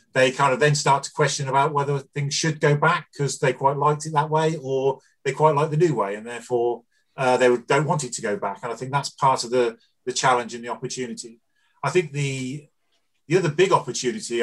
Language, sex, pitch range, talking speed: English, male, 125-150 Hz, 235 wpm